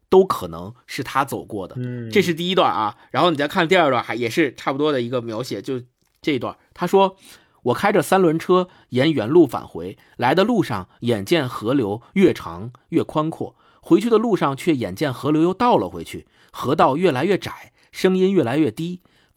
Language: Chinese